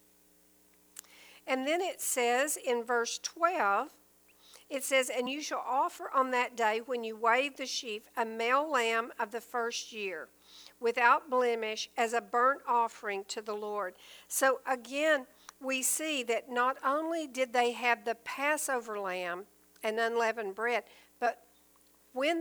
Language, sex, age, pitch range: English, female, 50-69, 215-260 Hz